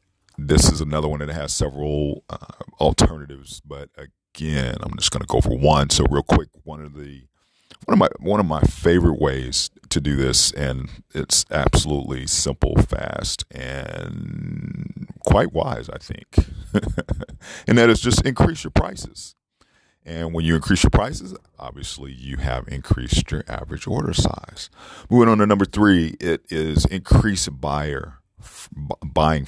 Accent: American